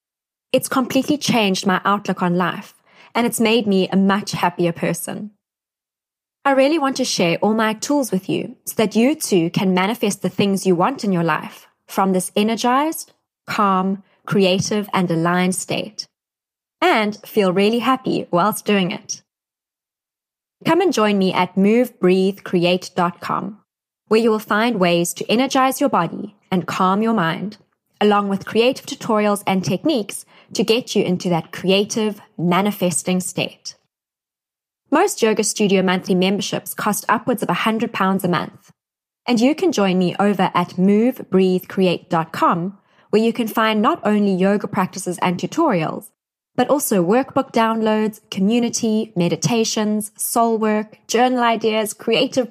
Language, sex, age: English, female, 20-39